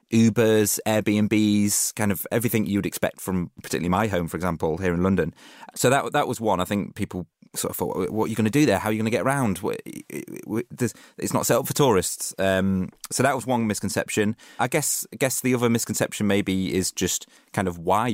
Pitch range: 90-110 Hz